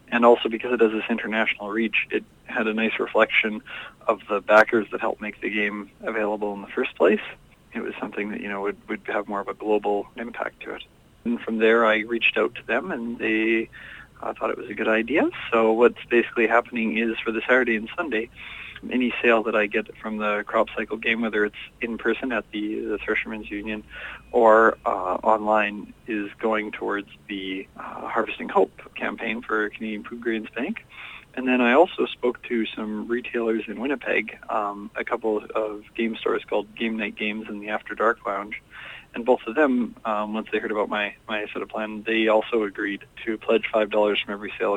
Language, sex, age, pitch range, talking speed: English, male, 40-59, 105-115 Hz, 205 wpm